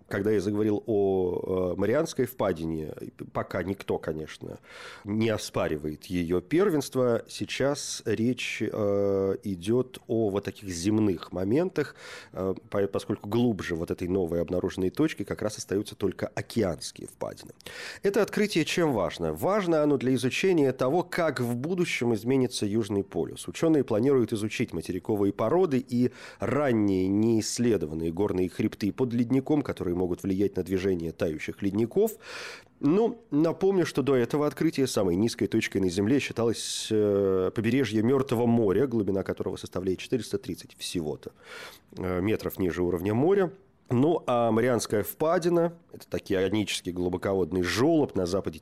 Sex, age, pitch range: male, 30-49, 95-130 Hz